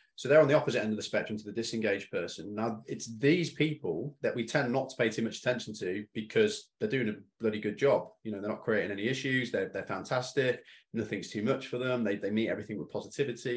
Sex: male